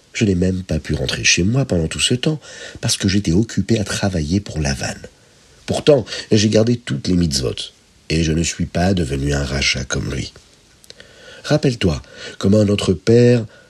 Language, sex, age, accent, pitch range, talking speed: French, male, 50-69, French, 85-110 Hz, 175 wpm